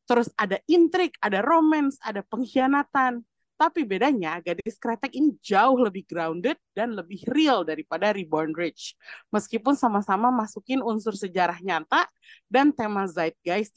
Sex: female